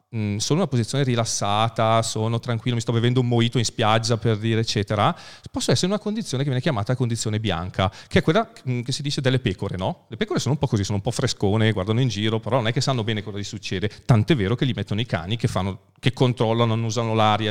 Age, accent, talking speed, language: 40-59, native, 245 wpm, Italian